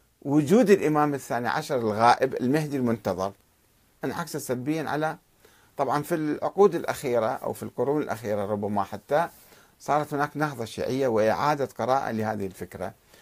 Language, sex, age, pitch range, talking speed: Arabic, male, 50-69, 115-160 Hz, 125 wpm